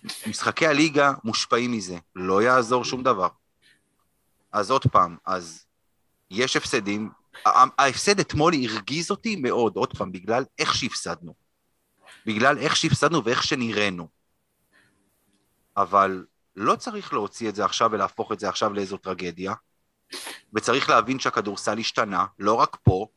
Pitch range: 105-165 Hz